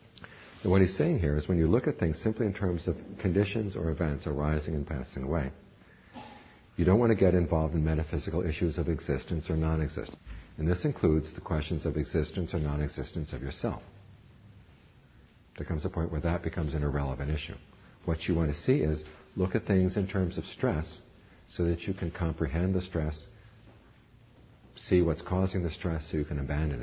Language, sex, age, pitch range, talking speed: English, male, 50-69, 75-95 Hz, 190 wpm